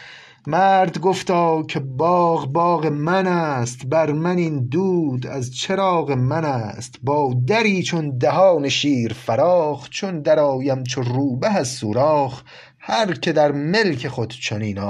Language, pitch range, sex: Persian, 115-170 Hz, male